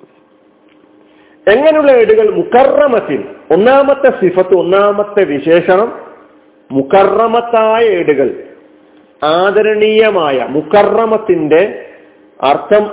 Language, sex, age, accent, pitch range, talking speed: Malayalam, male, 40-59, native, 160-235 Hz, 55 wpm